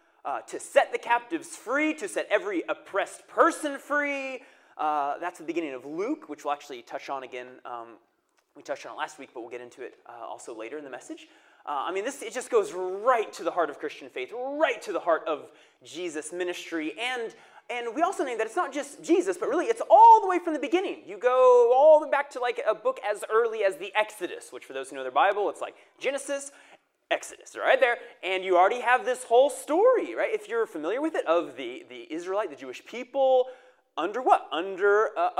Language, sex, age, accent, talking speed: English, male, 30-49, American, 225 wpm